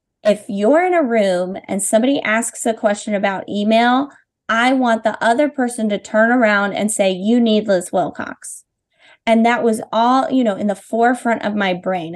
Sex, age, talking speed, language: female, 20-39, 190 wpm, English